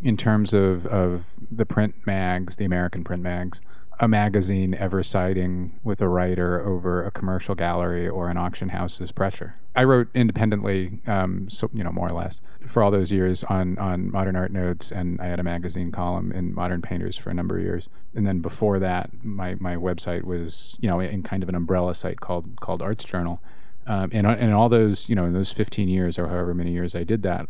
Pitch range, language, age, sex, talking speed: 90-100 Hz, English, 30-49, male, 215 wpm